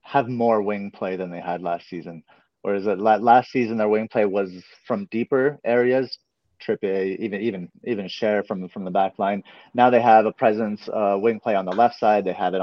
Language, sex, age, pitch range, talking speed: English, male, 30-49, 95-115 Hz, 220 wpm